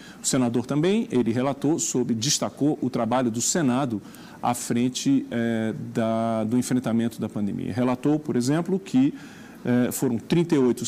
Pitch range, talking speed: 115-150 Hz, 130 wpm